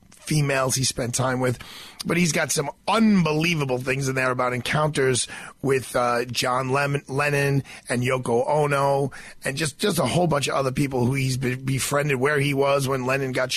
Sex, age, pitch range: male, 40-59, 130-155 Hz